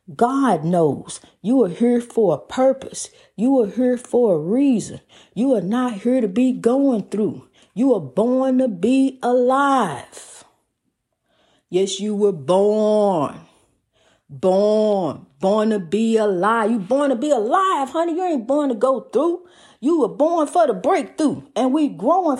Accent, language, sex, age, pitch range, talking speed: American, English, female, 40-59, 210-265 Hz, 155 wpm